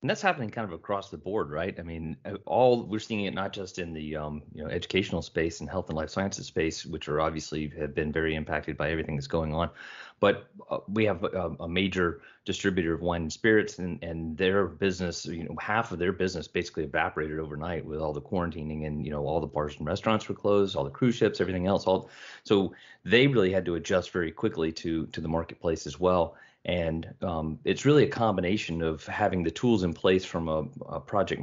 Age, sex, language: 30-49, male, English